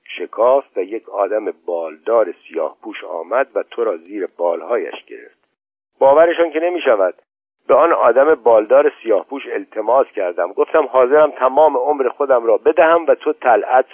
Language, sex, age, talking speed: Persian, male, 50-69, 140 wpm